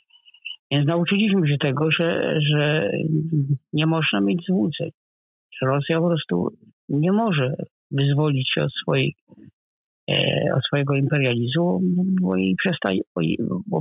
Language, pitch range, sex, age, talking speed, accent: Polish, 130-175 Hz, male, 50-69, 100 wpm, native